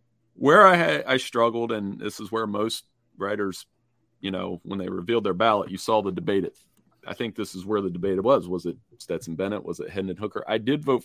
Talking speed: 225 wpm